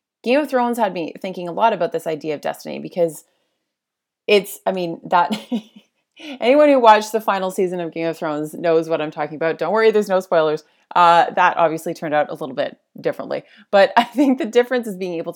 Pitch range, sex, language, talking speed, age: 170-215 Hz, female, English, 215 wpm, 30-49